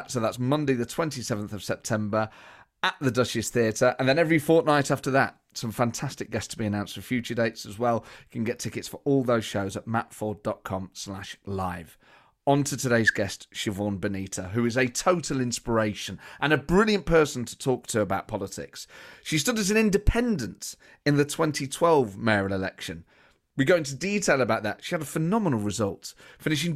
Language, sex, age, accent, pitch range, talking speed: English, male, 30-49, British, 110-155 Hz, 180 wpm